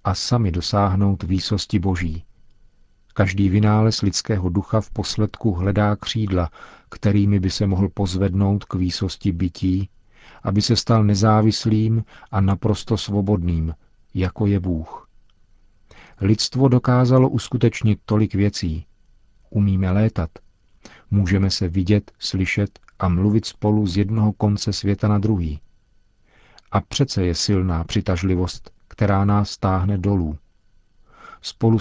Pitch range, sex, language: 95-110 Hz, male, Czech